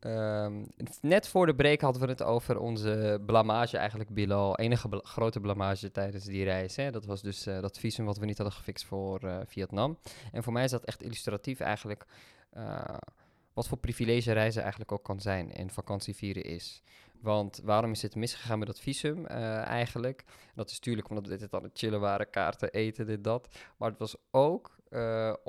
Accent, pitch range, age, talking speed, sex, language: Dutch, 100-120 Hz, 20-39, 200 wpm, male, Dutch